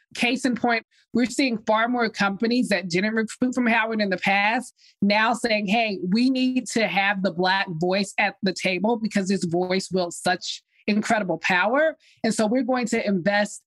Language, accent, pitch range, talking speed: English, American, 185-240 Hz, 185 wpm